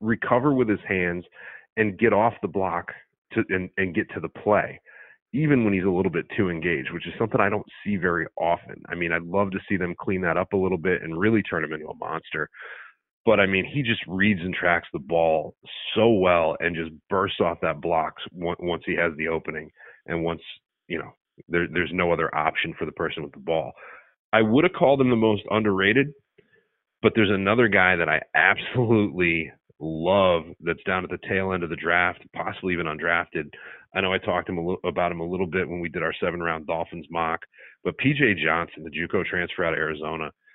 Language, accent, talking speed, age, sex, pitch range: English, American, 220 wpm, 30-49, male, 85-105 Hz